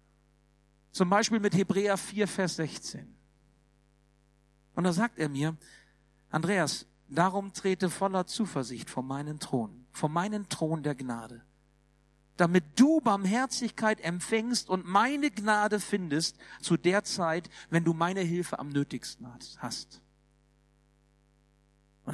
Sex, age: male, 50-69